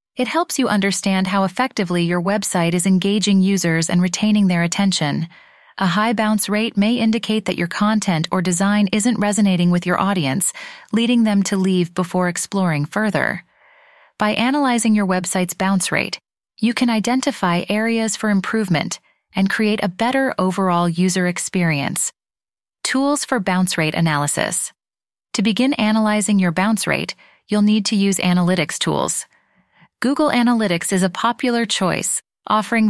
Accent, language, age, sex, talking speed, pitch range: American, English, 30-49, female, 150 wpm, 180-225 Hz